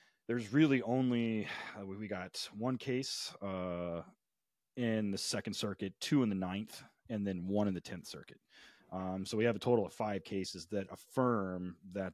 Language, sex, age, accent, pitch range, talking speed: English, male, 30-49, American, 90-115 Hz, 180 wpm